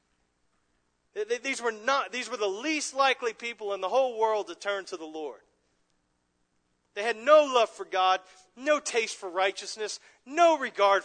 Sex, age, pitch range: male, 40-59, 155-220 Hz